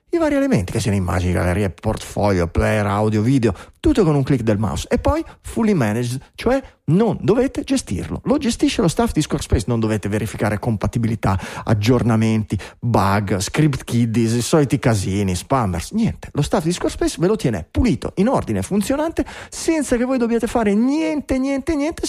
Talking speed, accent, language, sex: 170 wpm, native, Italian, male